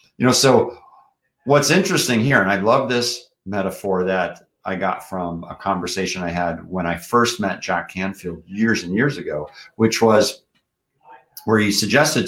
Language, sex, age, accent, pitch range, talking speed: English, male, 50-69, American, 90-120 Hz, 165 wpm